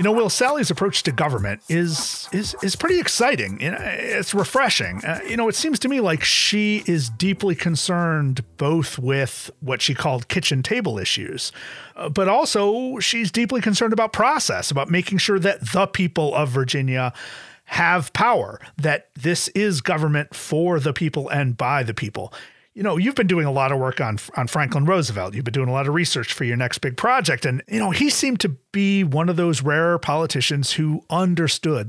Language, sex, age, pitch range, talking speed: English, male, 40-59, 145-195 Hz, 190 wpm